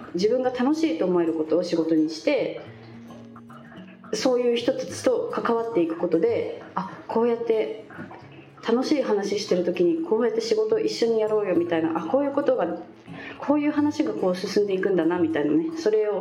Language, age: Japanese, 20-39